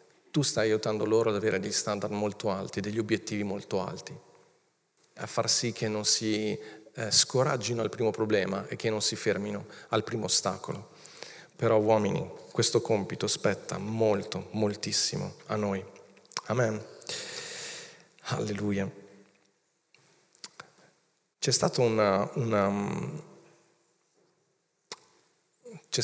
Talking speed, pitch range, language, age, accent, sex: 110 wpm, 105-125 Hz, Italian, 40-59, native, male